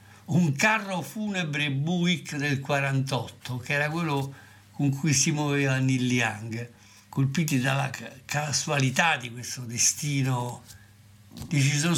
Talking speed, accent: 110 wpm, native